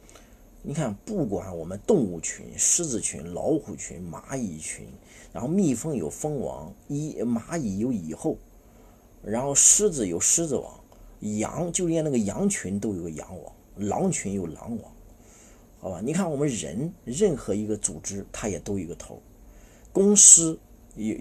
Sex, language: male, Chinese